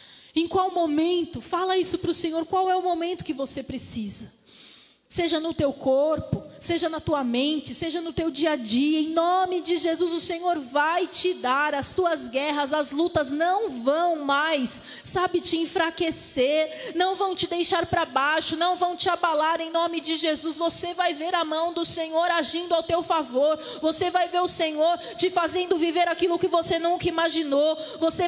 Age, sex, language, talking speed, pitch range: 20-39, female, Portuguese, 185 wpm, 330-380 Hz